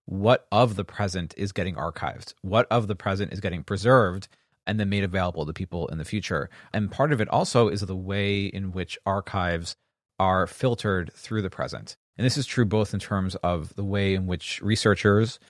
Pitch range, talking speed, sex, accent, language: 90-105 Hz, 200 wpm, male, American, English